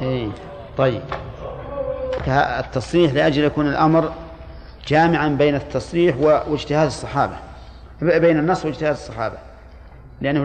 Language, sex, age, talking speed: Arabic, male, 50-69, 90 wpm